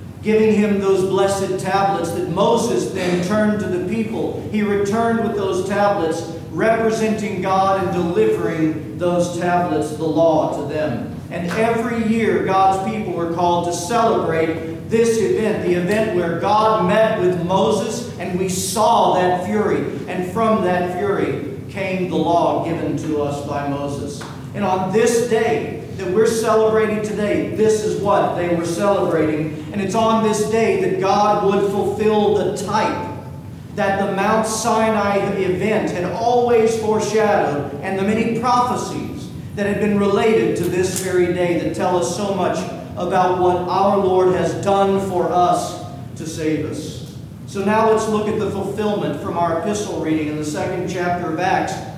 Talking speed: 160 wpm